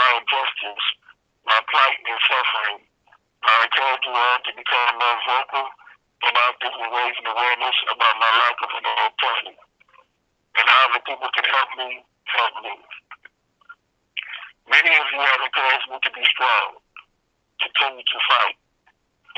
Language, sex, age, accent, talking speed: English, male, 40-59, American, 140 wpm